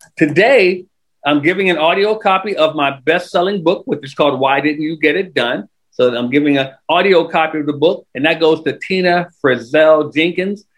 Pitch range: 155-210 Hz